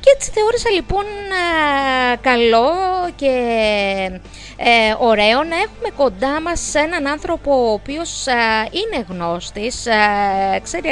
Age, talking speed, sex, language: 20-39, 95 wpm, female, Greek